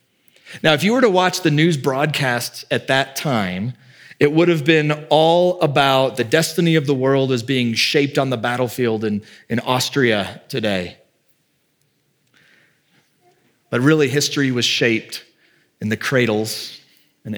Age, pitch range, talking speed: 40-59, 125-165 Hz, 145 wpm